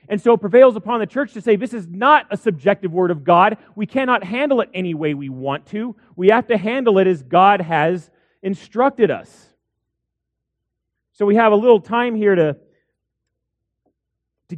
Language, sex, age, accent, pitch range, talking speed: English, male, 40-59, American, 180-220 Hz, 185 wpm